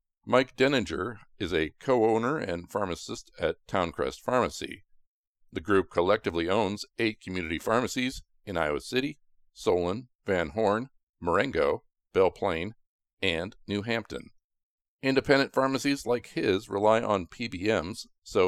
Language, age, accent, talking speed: English, 50-69, American, 120 wpm